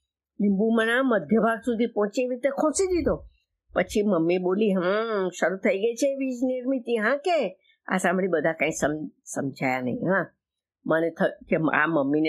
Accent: native